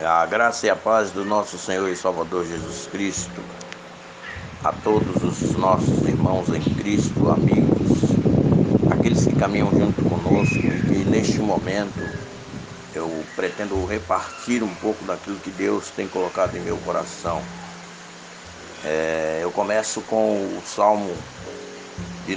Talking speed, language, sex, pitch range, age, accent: 130 wpm, Portuguese, male, 90-110 Hz, 60-79, Brazilian